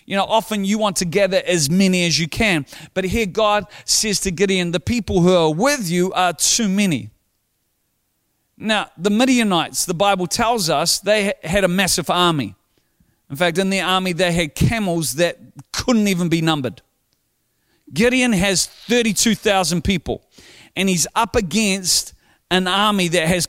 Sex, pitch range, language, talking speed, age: male, 170-215 Hz, English, 165 wpm, 40-59